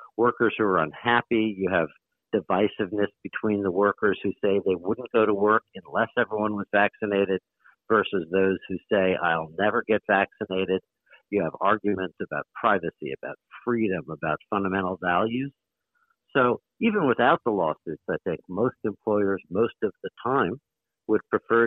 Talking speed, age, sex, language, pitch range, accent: 150 wpm, 60-79, male, English, 90-110 Hz, American